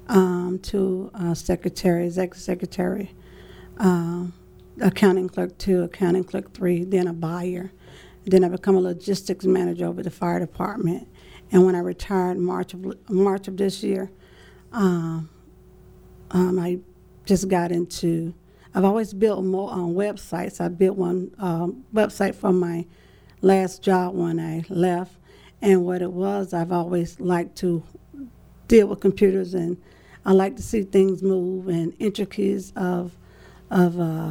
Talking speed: 140 wpm